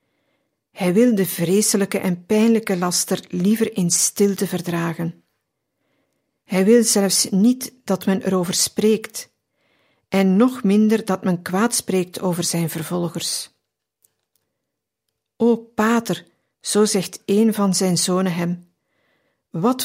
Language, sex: Dutch, female